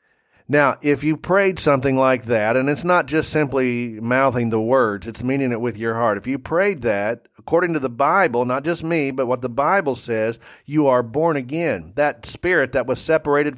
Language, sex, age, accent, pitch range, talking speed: English, male, 40-59, American, 125-155 Hz, 205 wpm